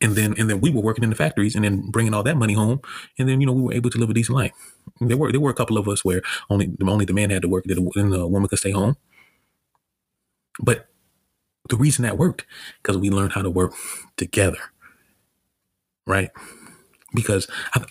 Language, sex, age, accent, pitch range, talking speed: English, male, 30-49, American, 100-125 Hz, 225 wpm